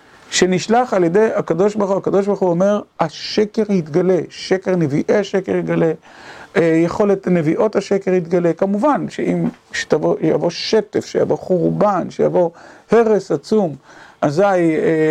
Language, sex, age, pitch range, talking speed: Hebrew, male, 50-69, 165-205 Hz, 125 wpm